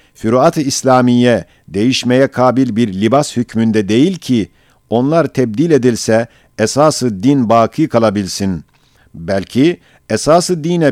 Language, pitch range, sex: Turkish, 115-140 Hz, male